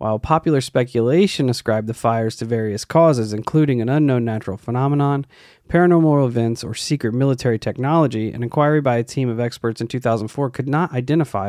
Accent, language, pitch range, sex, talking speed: American, English, 115-145 Hz, male, 165 wpm